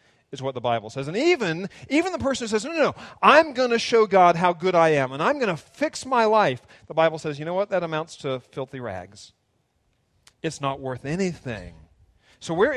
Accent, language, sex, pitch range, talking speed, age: American, English, male, 120-185 Hz, 225 wpm, 40-59